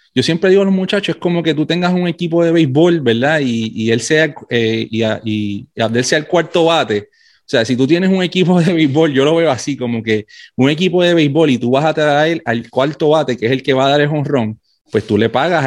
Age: 30-49